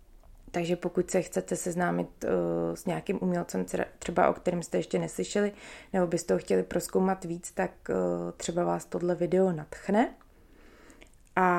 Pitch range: 165-200 Hz